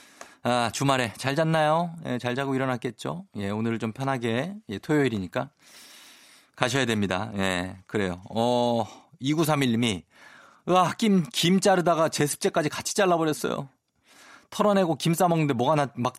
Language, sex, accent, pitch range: Korean, male, native, 105-140 Hz